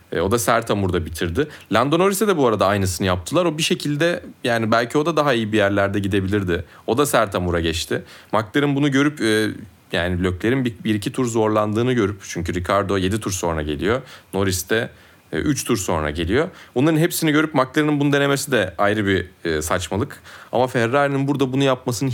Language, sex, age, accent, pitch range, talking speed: Turkish, male, 30-49, native, 95-140 Hz, 180 wpm